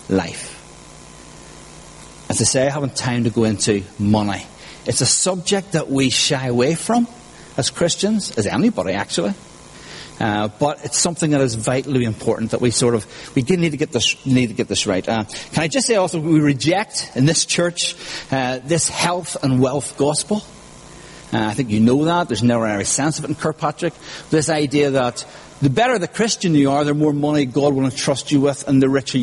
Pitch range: 120-160 Hz